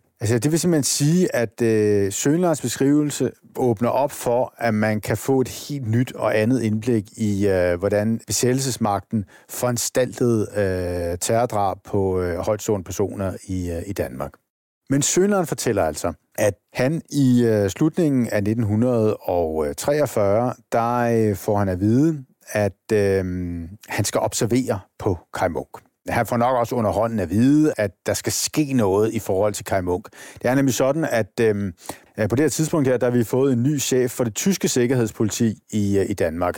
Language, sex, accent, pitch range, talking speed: Danish, male, native, 105-130 Hz, 170 wpm